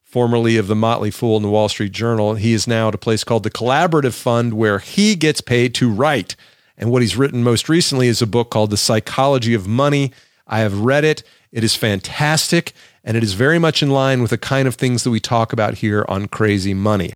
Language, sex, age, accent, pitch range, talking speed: English, male, 40-59, American, 105-130 Hz, 235 wpm